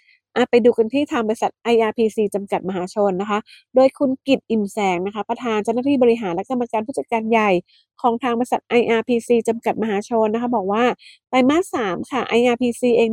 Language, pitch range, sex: English, 195-245 Hz, female